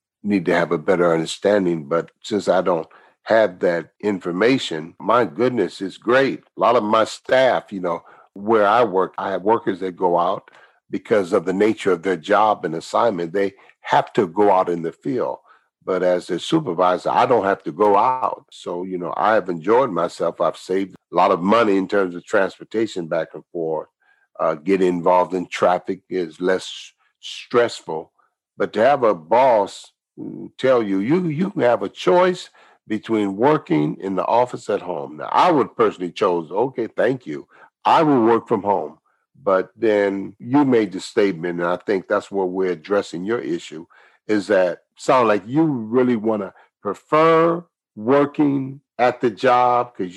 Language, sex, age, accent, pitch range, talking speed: English, male, 60-79, American, 90-120 Hz, 180 wpm